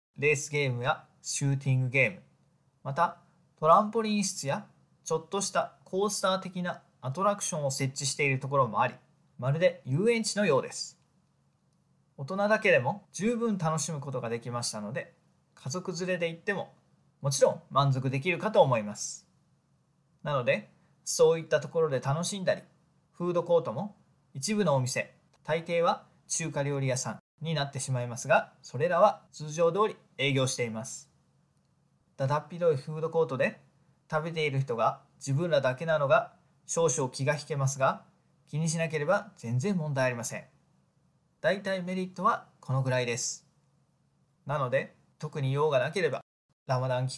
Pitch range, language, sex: 135-175 Hz, Japanese, male